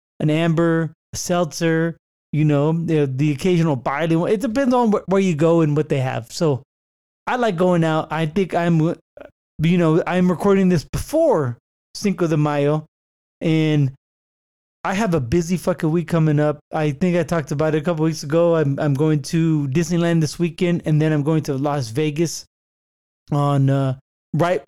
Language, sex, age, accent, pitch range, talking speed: English, male, 20-39, American, 145-180 Hz, 175 wpm